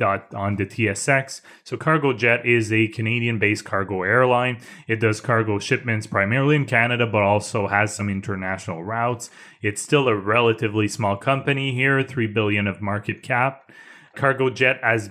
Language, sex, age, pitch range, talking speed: English, male, 20-39, 105-125 Hz, 155 wpm